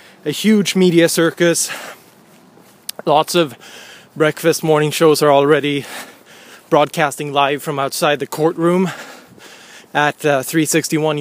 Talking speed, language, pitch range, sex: 105 wpm, English, 145-155 Hz, male